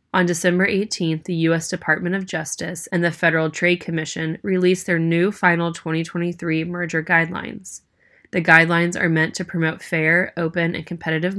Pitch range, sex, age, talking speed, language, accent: 160-180 Hz, female, 20-39, 160 wpm, English, American